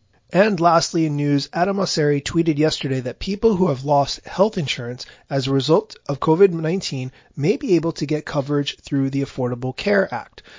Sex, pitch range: male, 140-175 Hz